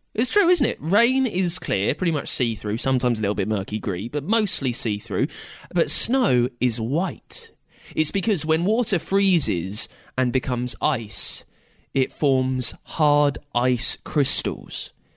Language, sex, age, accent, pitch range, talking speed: English, male, 20-39, British, 115-160 Hz, 140 wpm